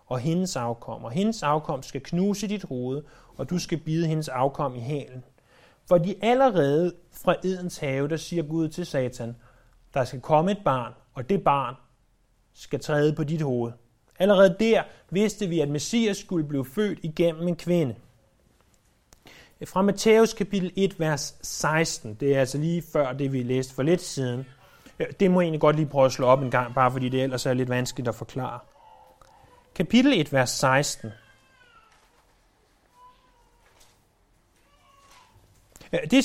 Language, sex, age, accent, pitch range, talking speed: Danish, male, 30-49, native, 130-195 Hz, 155 wpm